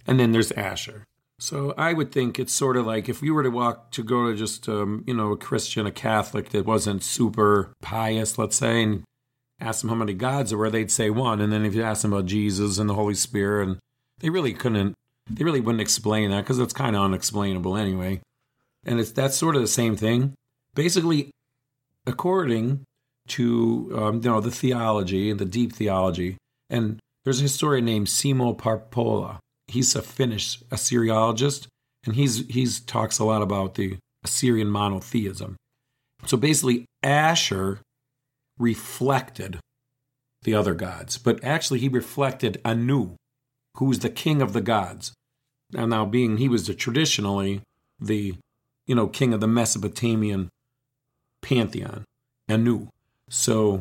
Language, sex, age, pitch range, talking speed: English, male, 40-59, 105-130 Hz, 165 wpm